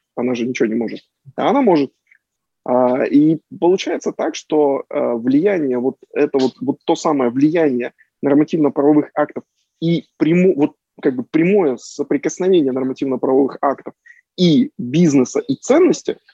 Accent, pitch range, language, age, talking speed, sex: native, 130-180 Hz, Russian, 20-39, 130 wpm, male